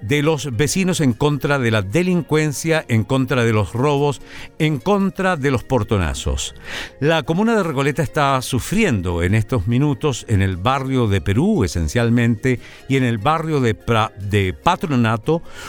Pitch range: 115-160 Hz